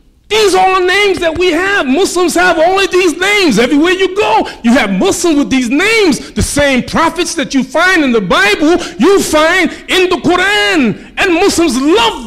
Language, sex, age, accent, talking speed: English, male, 40-59, American, 190 wpm